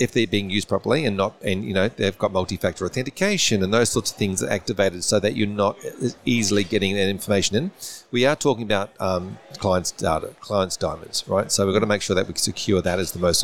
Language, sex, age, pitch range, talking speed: English, male, 40-59, 90-110 Hz, 235 wpm